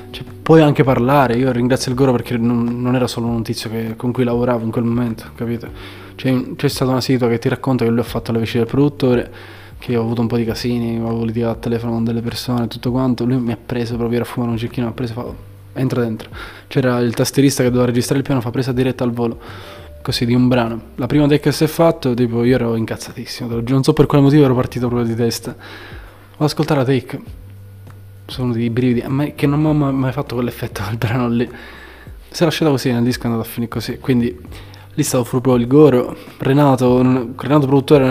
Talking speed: 240 wpm